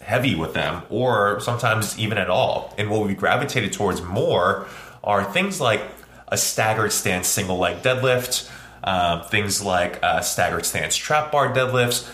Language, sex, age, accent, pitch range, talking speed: English, male, 20-39, American, 100-125 Hz, 160 wpm